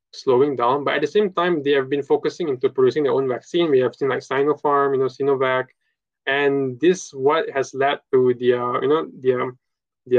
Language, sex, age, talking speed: English, male, 20-39, 220 wpm